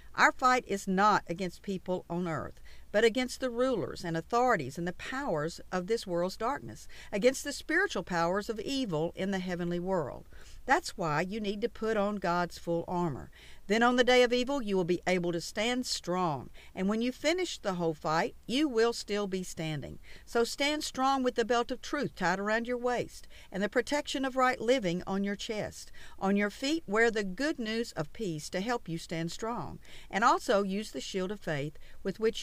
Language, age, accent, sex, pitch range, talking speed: English, 50-69, American, female, 170-245 Hz, 205 wpm